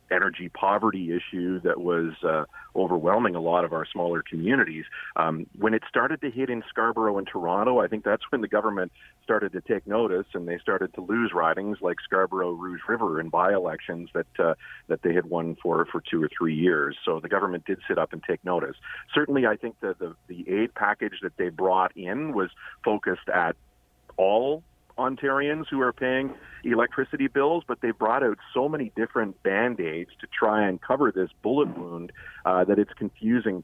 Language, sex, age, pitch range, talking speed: English, male, 40-59, 90-110 Hz, 190 wpm